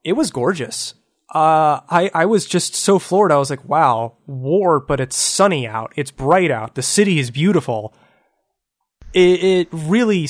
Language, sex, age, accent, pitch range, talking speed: English, male, 20-39, American, 125-175 Hz, 170 wpm